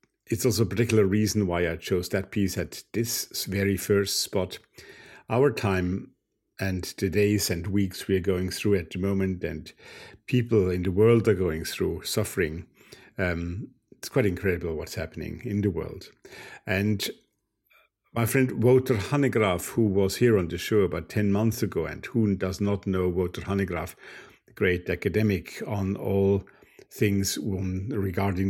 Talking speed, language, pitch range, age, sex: 160 wpm, English, 95-110 Hz, 50-69, male